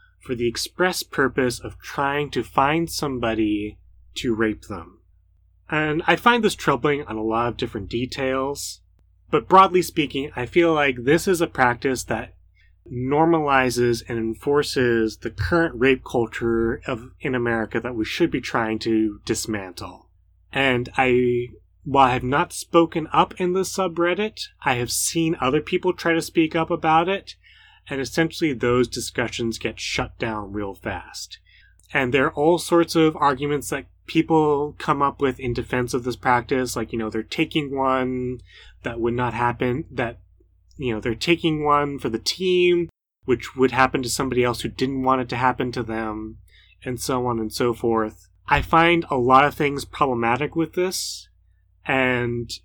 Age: 30-49